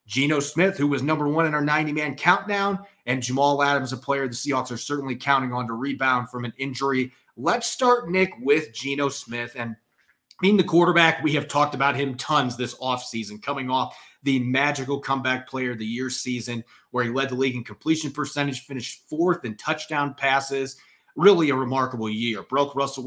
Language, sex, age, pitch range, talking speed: English, male, 30-49, 125-150 Hz, 190 wpm